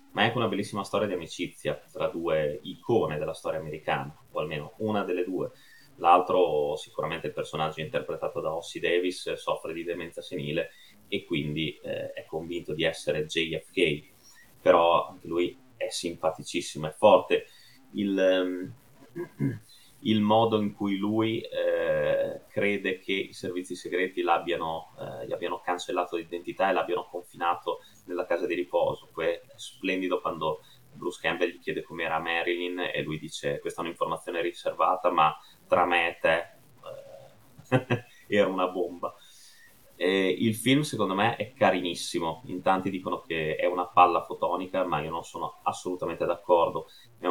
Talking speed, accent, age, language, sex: 145 wpm, native, 30-49, Italian, male